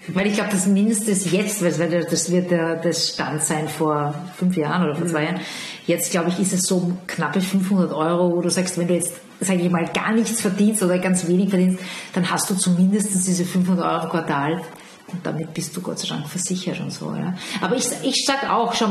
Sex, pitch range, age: female, 175-220 Hz, 40-59